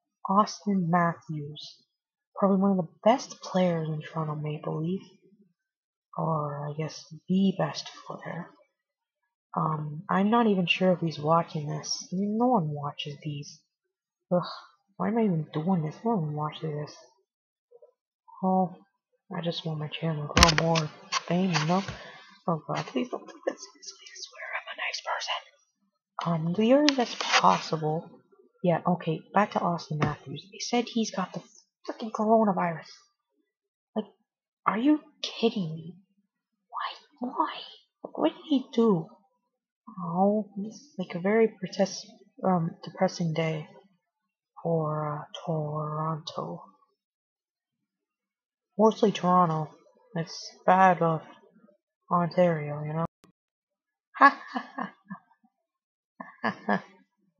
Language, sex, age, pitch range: English, female, 30-49, 165-230 Hz